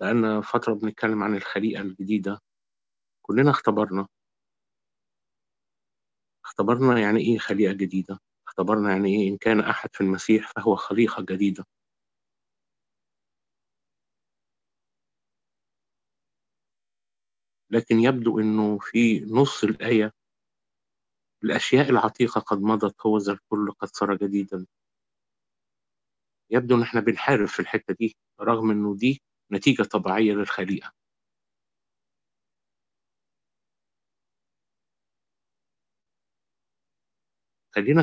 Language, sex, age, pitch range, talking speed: Arabic, male, 50-69, 100-115 Hz, 85 wpm